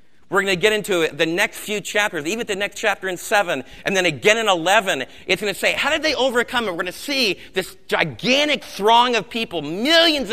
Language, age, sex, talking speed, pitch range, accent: English, 40-59, male, 225 wpm, 175-230 Hz, American